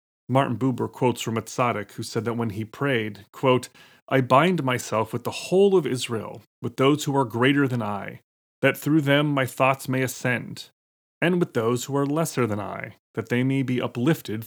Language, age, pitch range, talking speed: English, 30-49, 110-140 Hz, 195 wpm